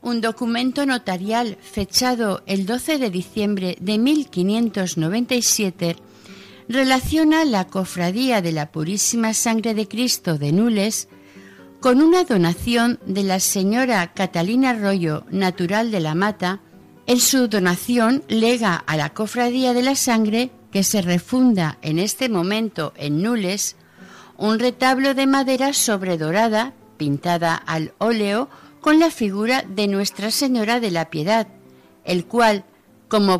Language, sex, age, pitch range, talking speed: Spanish, female, 50-69, 185-250 Hz, 130 wpm